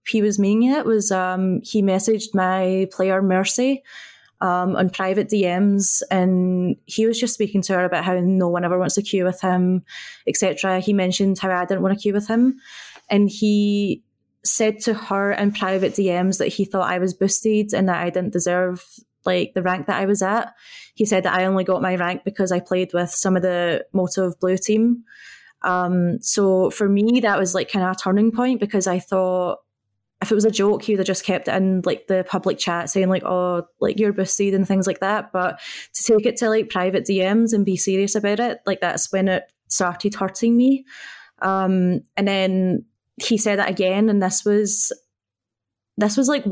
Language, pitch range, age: English, 185-210 Hz, 20-39